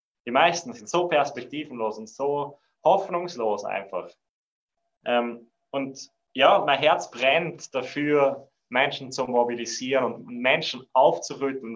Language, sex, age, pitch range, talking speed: German, male, 20-39, 130-160 Hz, 110 wpm